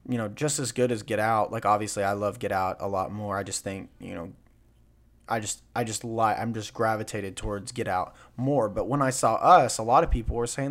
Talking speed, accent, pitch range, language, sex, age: 250 wpm, American, 105-130 Hz, English, male, 20-39